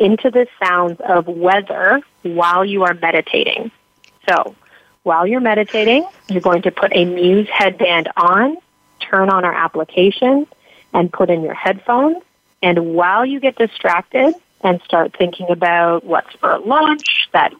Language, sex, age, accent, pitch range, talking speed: English, female, 30-49, American, 175-245 Hz, 145 wpm